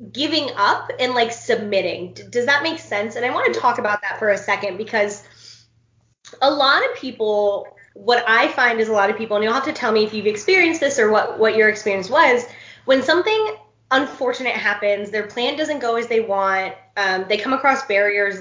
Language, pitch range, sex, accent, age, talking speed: English, 205-265 Hz, female, American, 20-39, 210 wpm